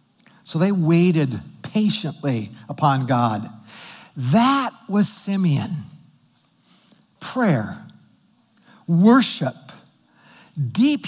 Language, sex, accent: English, male, American